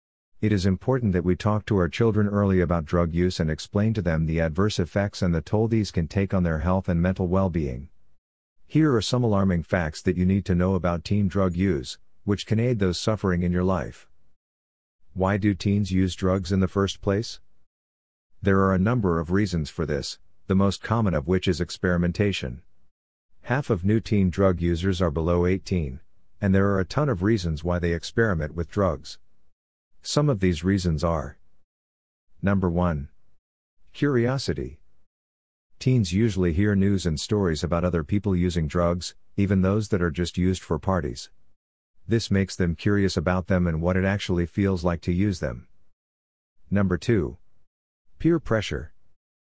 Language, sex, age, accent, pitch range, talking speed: English, male, 50-69, American, 85-100 Hz, 175 wpm